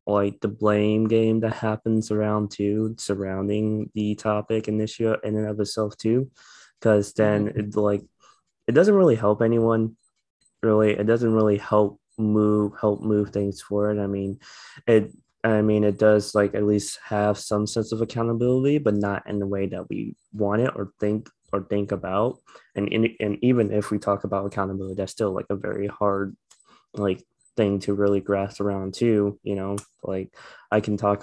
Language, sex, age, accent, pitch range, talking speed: English, male, 20-39, American, 100-110 Hz, 175 wpm